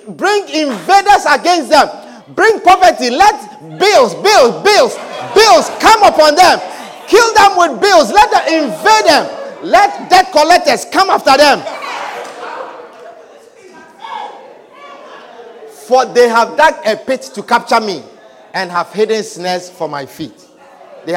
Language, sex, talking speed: English, male, 130 wpm